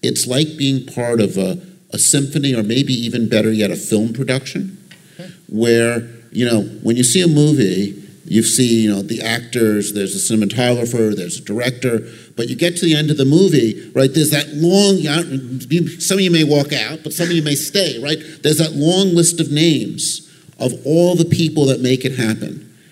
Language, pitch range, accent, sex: English, 115-150 Hz, American, male